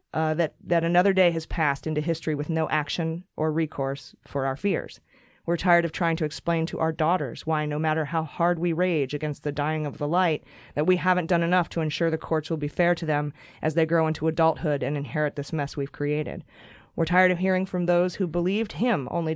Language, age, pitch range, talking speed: English, 20-39, 155-180 Hz, 230 wpm